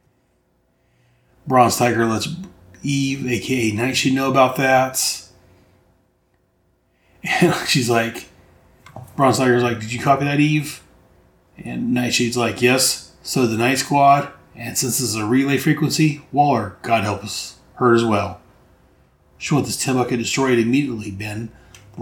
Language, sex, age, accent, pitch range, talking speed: English, male, 30-49, American, 105-130 Hz, 145 wpm